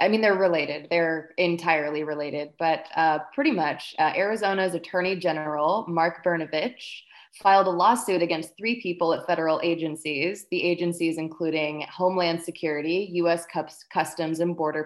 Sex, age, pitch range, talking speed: female, 20-39, 160-190 Hz, 140 wpm